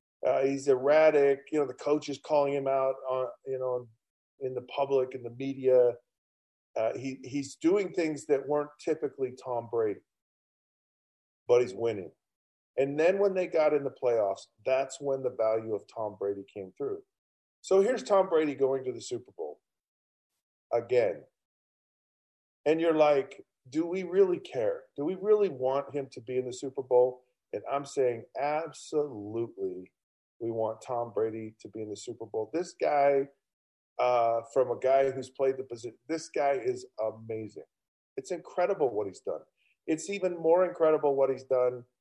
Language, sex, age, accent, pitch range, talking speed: English, male, 40-59, American, 125-185 Hz, 170 wpm